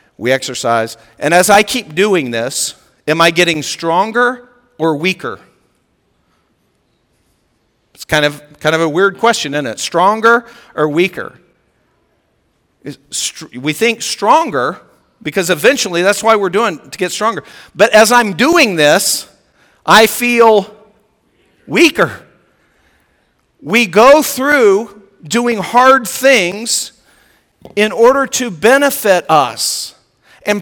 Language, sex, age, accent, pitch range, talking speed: English, male, 50-69, American, 175-235 Hz, 115 wpm